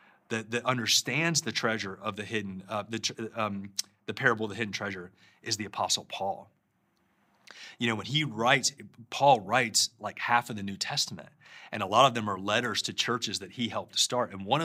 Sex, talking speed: male, 200 wpm